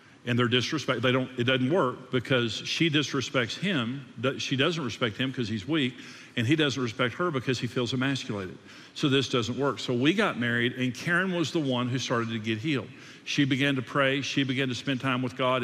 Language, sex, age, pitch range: English, male, 50-69, 125-175 Hz